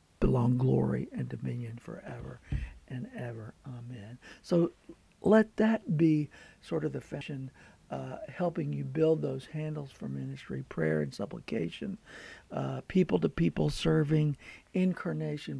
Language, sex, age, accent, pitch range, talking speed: English, male, 60-79, American, 115-160 Hz, 125 wpm